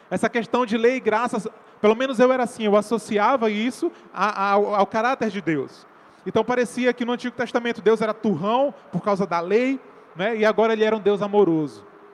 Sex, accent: male, Brazilian